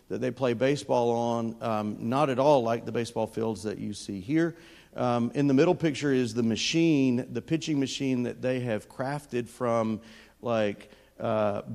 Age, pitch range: 40-59, 110-125 Hz